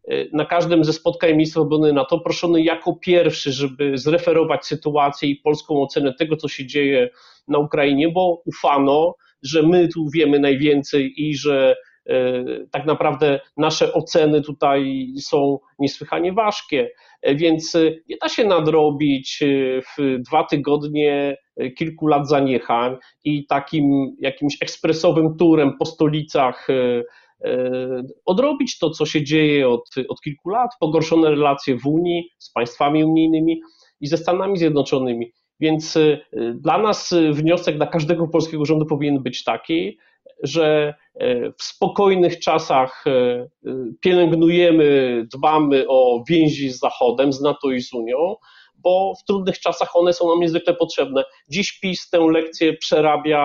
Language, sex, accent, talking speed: Polish, male, native, 130 wpm